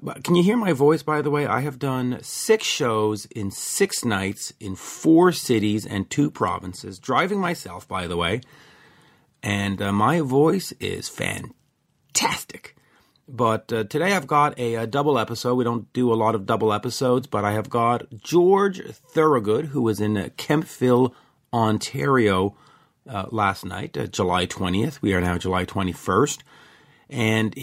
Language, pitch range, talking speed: English, 105-145 Hz, 160 wpm